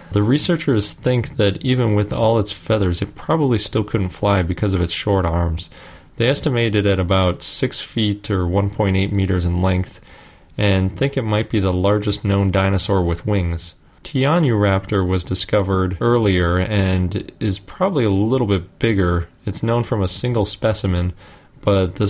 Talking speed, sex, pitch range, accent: 165 wpm, male, 95-115 Hz, American